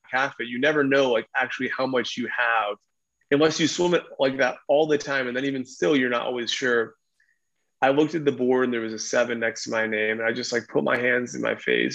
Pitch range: 120-130 Hz